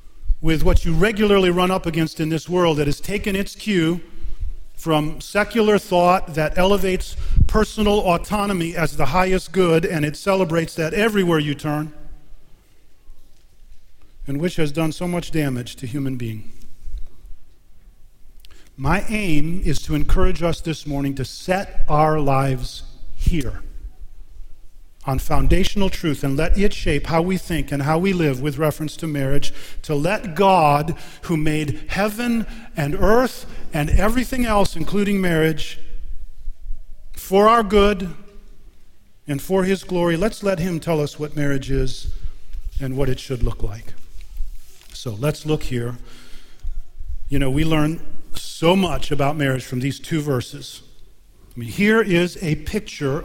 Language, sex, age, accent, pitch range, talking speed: English, male, 40-59, American, 130-180 Hz, 145 wpm